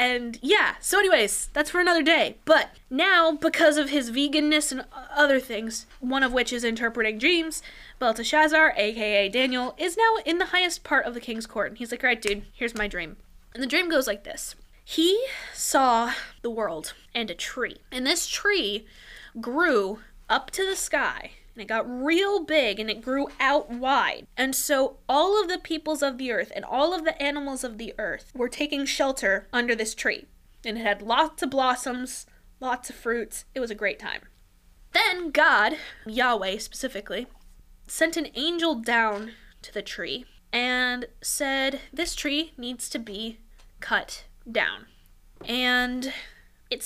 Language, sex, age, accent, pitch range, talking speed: English, female, 10-29, American, 235-315 Hz, 175 wpm